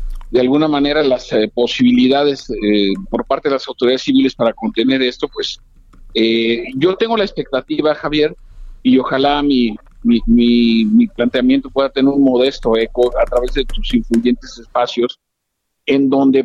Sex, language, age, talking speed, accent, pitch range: male, Spanish, 50-69, 150 wpm, Mexican, 125-160 Hz